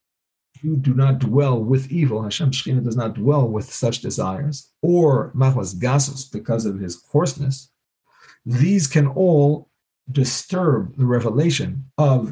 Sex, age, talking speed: male, 50-69, 135 wpm